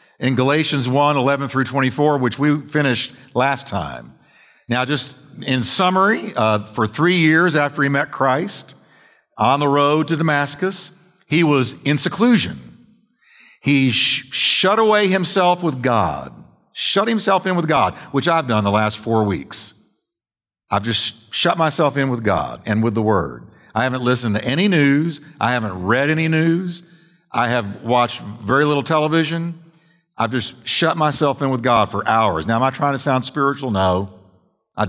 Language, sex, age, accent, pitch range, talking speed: English, male, 50-69, American, 115-155 Hz, 165 wpm